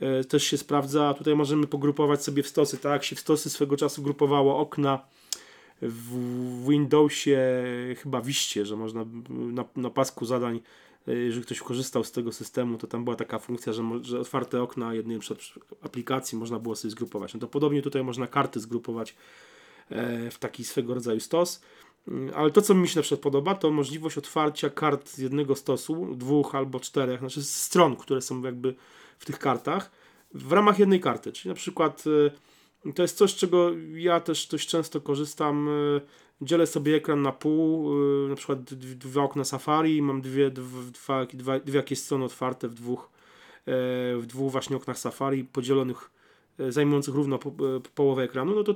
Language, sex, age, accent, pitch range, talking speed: Polish, male, 30-49, native, 125-150 Hz, 165 wpm